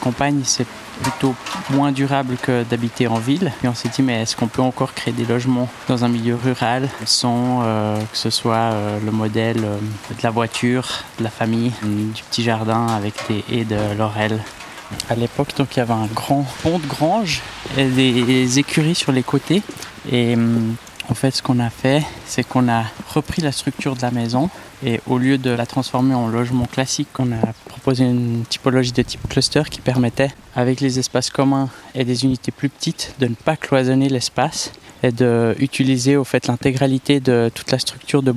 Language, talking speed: French, 195 wpm